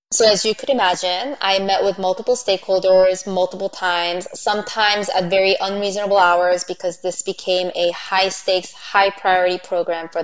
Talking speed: 160 wpm